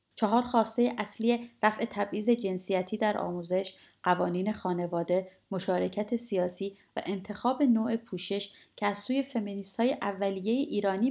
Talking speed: 125 wpm